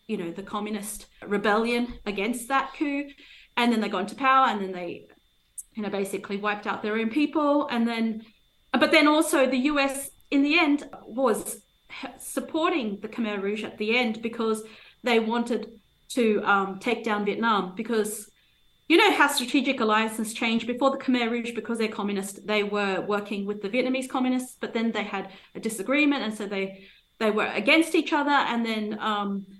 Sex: female